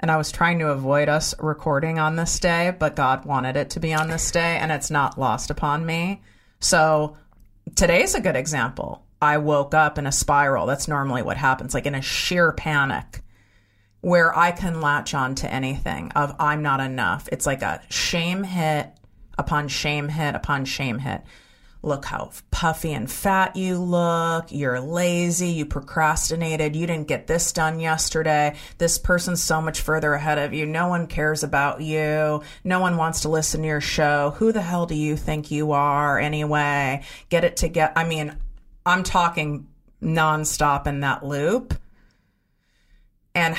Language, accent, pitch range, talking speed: English, American, 145-165 Hz, 175 wpm